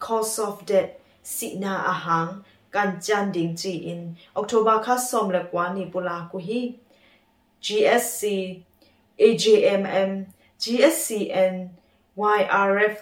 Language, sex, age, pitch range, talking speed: English, female, 20-39, 180-220 Hz, 90 wpm